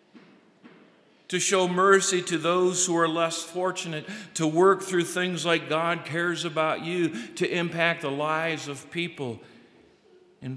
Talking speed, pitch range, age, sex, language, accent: 140 wpm, 120-175 Hz, 50-69, male, English, American